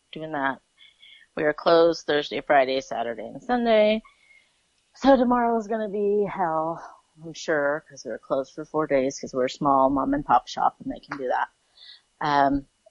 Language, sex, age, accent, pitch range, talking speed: English, female, 30-49, American, 140-170 Hz, 175 wpm